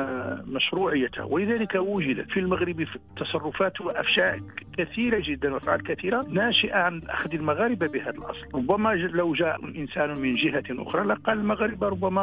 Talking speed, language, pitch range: 130 wpm, Arabic, 145-200 Hz